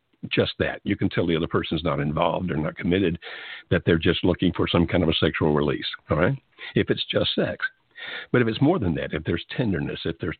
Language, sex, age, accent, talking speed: English, male, 60-79, American, 235 wpm